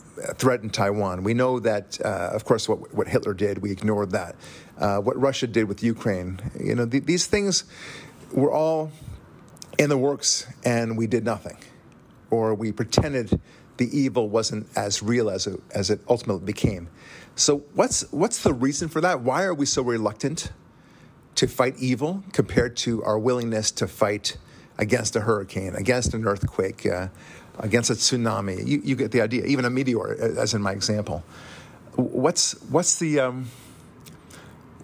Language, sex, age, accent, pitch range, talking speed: English, male, 40-59, American, 105-135 Hz, 165 wpm